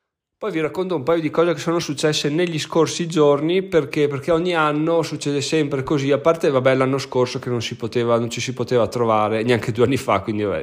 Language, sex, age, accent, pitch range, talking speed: Italian, male, 20-39, native, 110-145 Hz, 220 wpm